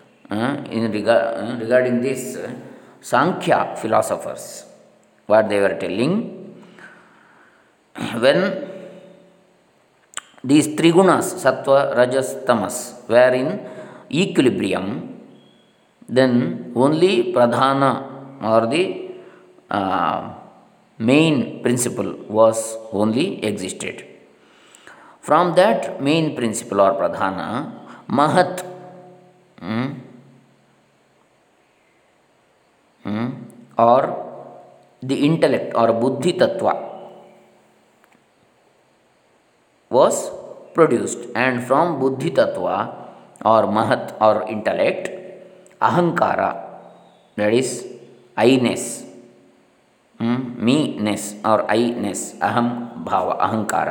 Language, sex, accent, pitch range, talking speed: Kannada, male, native, 110-170 Hz, 70 wpm